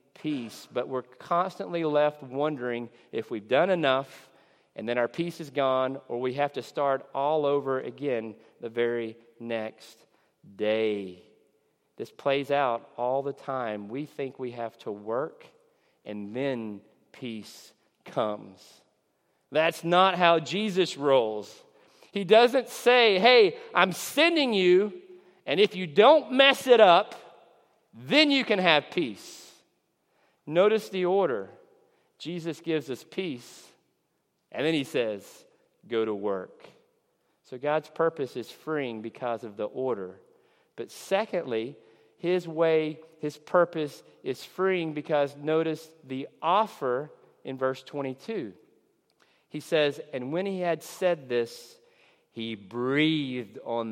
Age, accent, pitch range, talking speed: 40-59, American, 120-180 Hz, 130 wpm